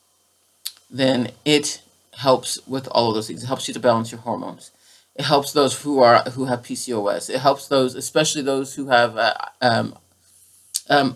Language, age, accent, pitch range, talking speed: English, 30-49, American, 125-170 Hz, 175 wpm